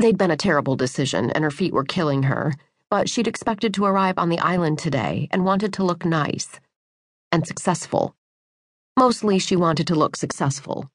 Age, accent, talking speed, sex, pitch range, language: 40-59, American, 180 wpm, female, 155-200 Hz, English